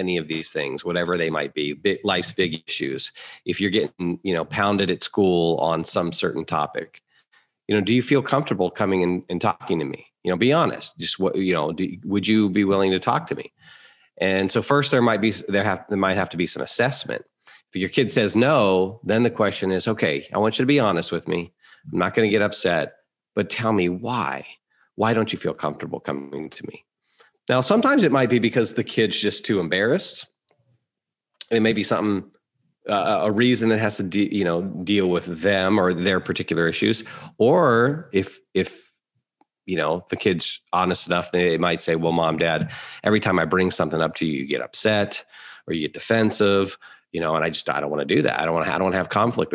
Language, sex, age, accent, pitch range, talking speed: English, male, 40-59, American, 90-110 Hz, 225 wpm